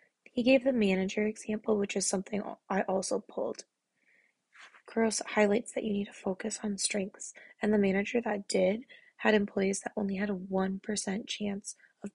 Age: 10-29